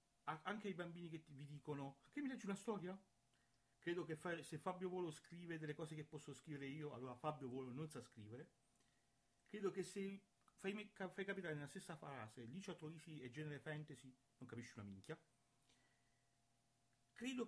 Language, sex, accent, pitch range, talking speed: Italian, male, native, 115-175 Hz, 170 wpm